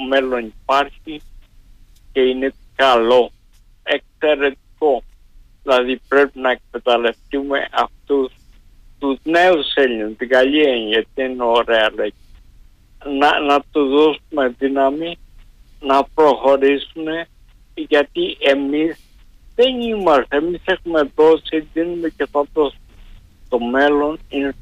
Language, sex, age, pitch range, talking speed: Greek, male, 50-69, 115-160 Hz, 100 wpm